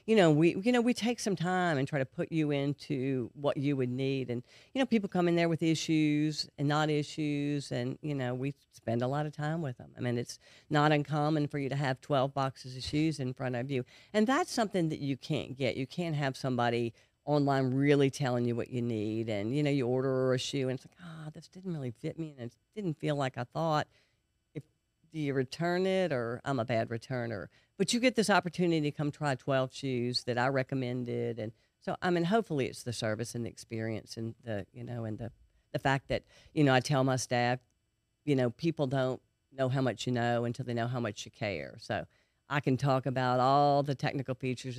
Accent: American